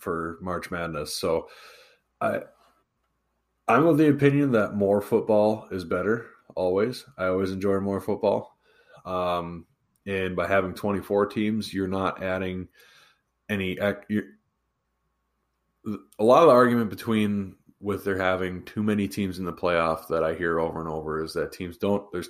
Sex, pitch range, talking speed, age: male, 85-105 Hz, 150 wpm, 20-39